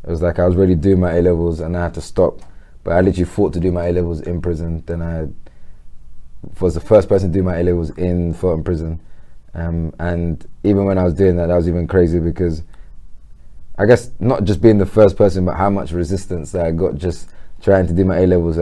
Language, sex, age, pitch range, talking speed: English, male, 20-39, 85-95 Hz, 230 wpm